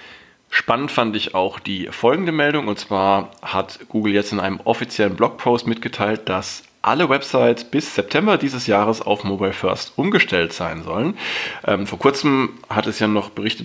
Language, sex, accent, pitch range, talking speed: German, male, German, 100-115 Hz, 165 wpm